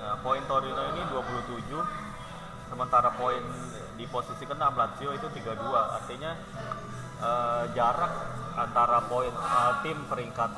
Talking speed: 115 wpm